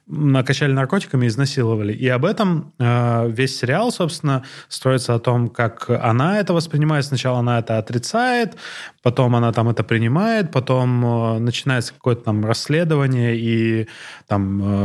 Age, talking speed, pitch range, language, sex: 20-39, 140 wpm, 120-145 Hz, Russian, male